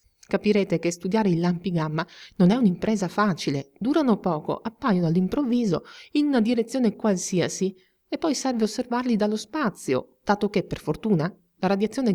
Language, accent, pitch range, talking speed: Italian, native, 175-230 Hz, 150 wpm